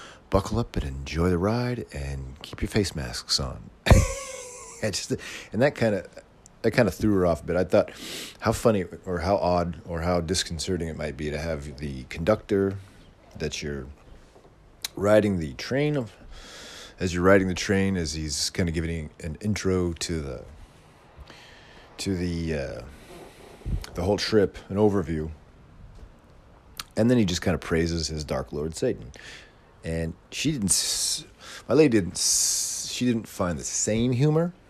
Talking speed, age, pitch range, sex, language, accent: 165 wpm, 40-59, 80-100 Hz, male, English, American